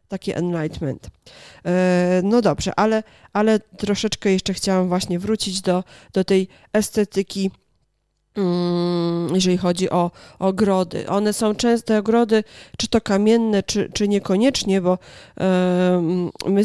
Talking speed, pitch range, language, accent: 115 wpm, 180-205 Hz, Polish, native